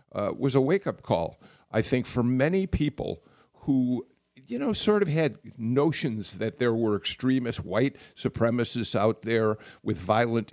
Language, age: English, 50-69